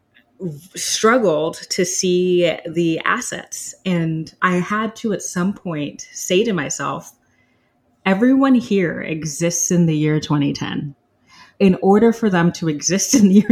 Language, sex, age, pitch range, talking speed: English, female, 30-49, 150-180 Hz, 140 wpm